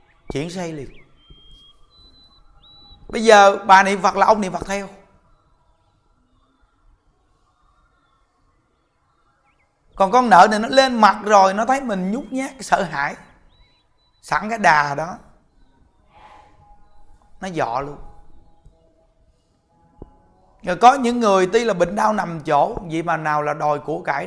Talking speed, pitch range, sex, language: 130 wpm, 135-205 Hz, male, Vietnamese